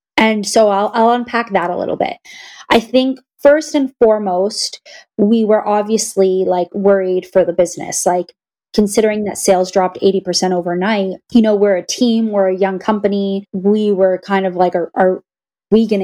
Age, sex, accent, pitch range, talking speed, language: 20-39, female, American, 190-235 Hz, 175 wpm, English